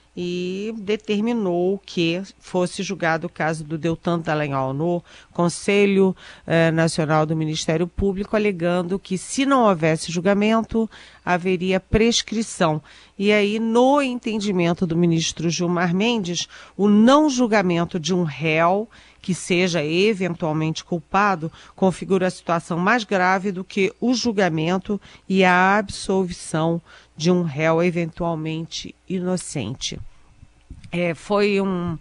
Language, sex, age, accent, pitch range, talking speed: Portuguese, female, 40-59, Brazilian, 160-195 Hz, 115 wpm